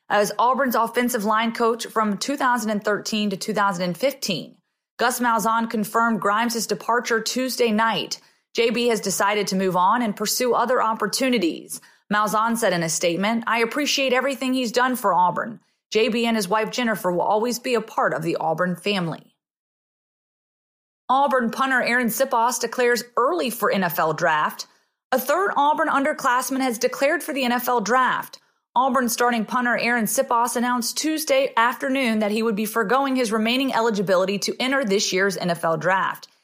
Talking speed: 155 wpm